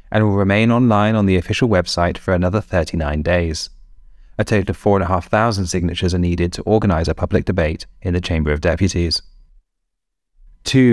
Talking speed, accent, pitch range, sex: 165 wpm, British, 90-105 Hz, male